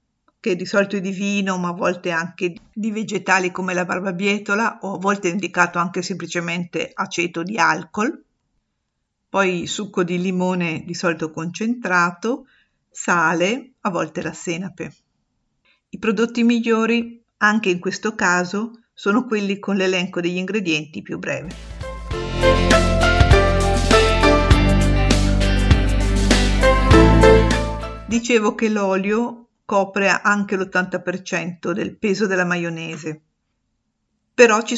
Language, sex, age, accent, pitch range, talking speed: Italian, female, 50-69, native, 170-205 Hz, 110 wpm